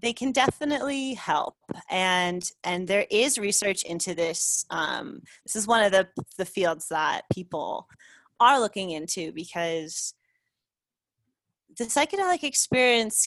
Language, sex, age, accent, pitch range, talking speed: English, female, 30-49, American, 175-225 Hz, 125 wpm